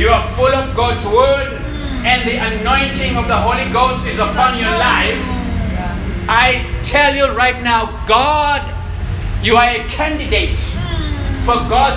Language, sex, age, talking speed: English, male, 60-79, 145 wpm